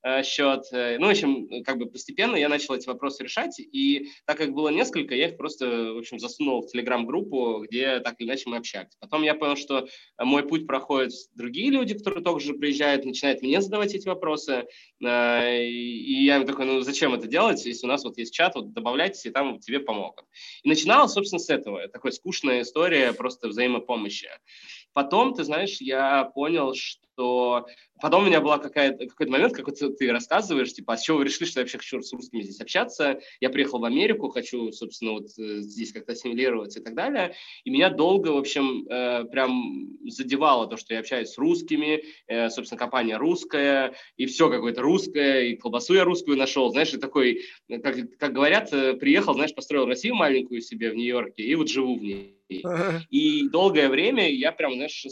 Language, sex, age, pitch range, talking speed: Russian, male, 20-39, 120-155 Hz, 185 wpm